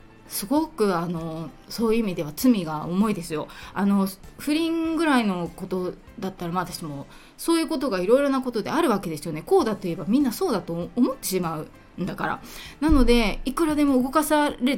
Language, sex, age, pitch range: Japanese, female, 20-39, 175-230 Hz